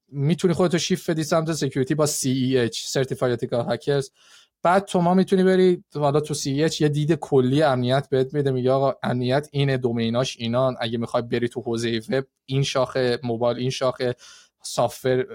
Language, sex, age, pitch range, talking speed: Persian, male, 20-39, 125-160 Hz, 160 wpm